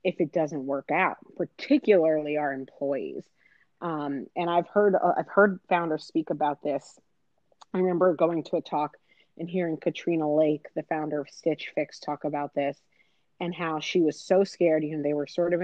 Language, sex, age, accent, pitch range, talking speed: English, female, 30-49, American, 150-175 Hz, 190 wpm